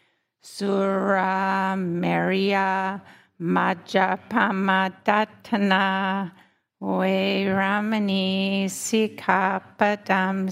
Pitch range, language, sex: 190-195 Hz, English, female